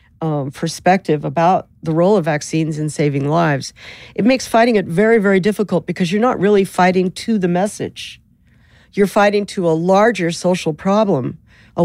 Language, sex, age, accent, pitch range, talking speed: English, female, 50-69, American, 155-195 Hz, 165 wpm